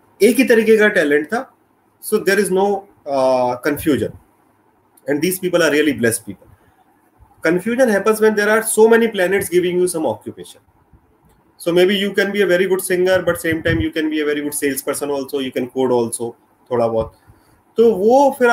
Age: 30-49